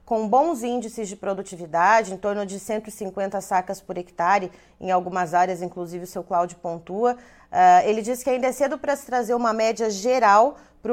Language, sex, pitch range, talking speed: Portuguese, female, 195-240 Hz, 185 wpm